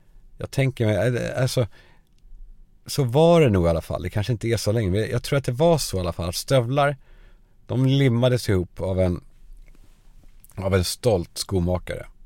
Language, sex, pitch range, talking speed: Swedish, male, 90-115 Hz, 175 wpm